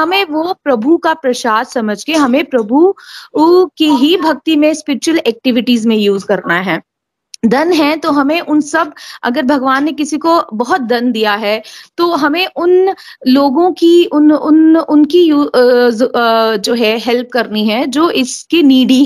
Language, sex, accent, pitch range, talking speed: Hindi, female, native, 245-320 Hz, 160 wpm